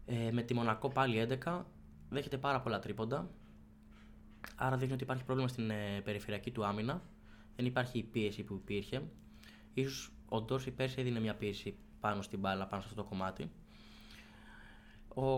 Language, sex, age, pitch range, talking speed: Greek, male, 20-39, 105-125 Hz, 165 wpm